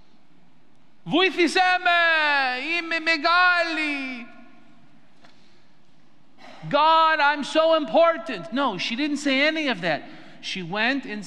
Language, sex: English, male